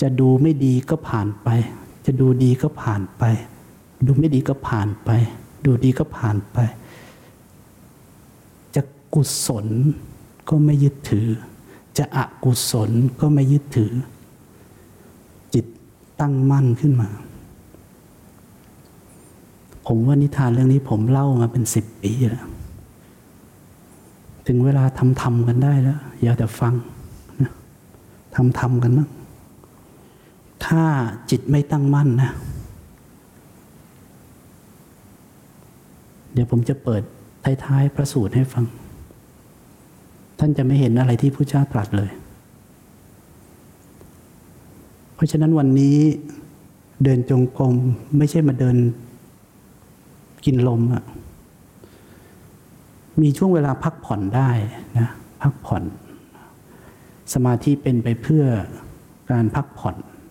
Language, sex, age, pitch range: English, male, 60-79, 115-140 Hz